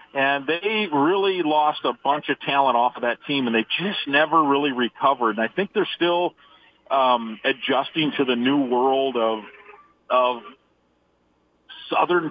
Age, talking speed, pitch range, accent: 40-59, 155 wpm, 115-140 Hz, American